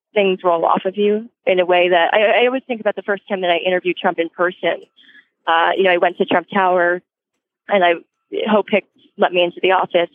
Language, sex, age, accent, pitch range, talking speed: English, female, 20-39, American, 180-220 Hz, 235 wpm